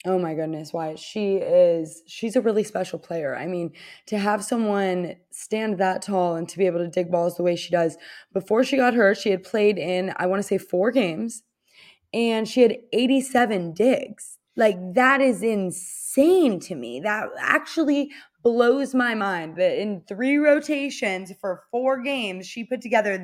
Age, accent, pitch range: 20-39, American, 180-225 Hz